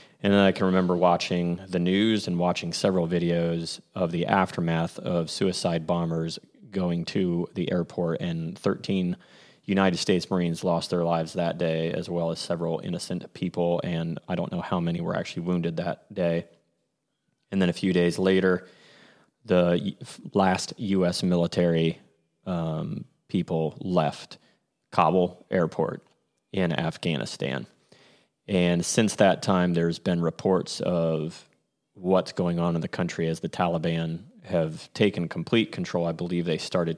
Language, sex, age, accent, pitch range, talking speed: English, male, 30-49, American, 85-90 Hz, 150 wpm